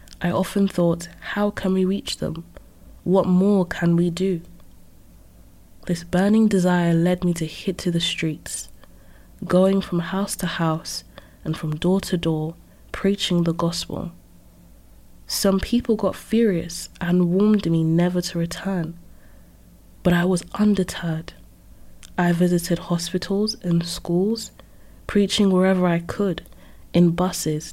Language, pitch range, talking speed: English, 165-190 Hz, 130 wpm